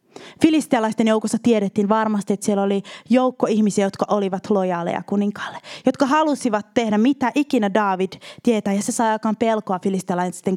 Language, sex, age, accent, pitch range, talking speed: Finnish, female, 20-39, native, 200-280 Hz, 140 wpm